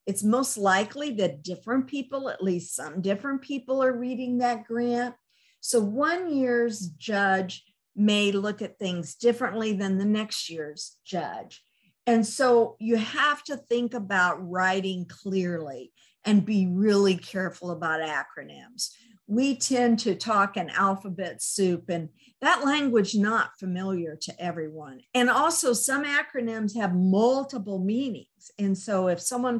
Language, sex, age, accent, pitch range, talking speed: English, female, 50-69, American, 185-245 Hz, 140 wpm